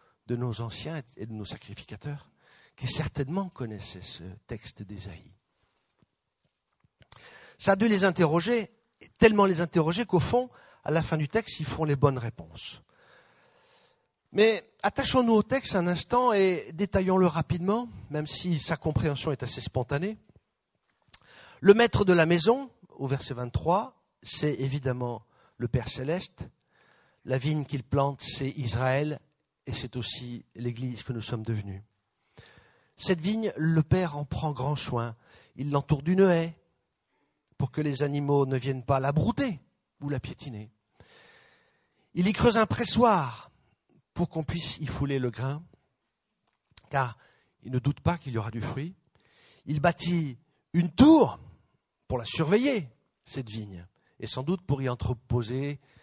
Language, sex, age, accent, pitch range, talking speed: English, male, 50-69, French, 125-175 Hz, 145 wpm